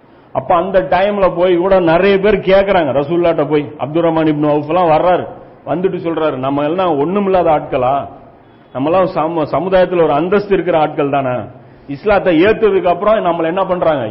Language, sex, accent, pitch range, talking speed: Tamil, male, native, 150-190 Hz, 135 wpm